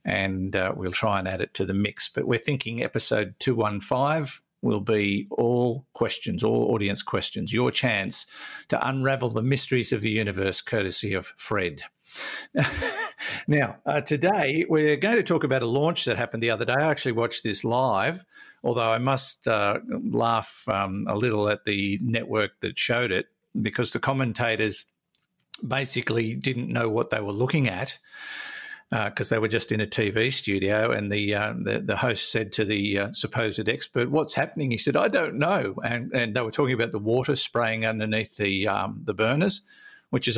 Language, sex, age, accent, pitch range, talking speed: English, male, 50-69, Australian, 105-135 Hz, 185 wpm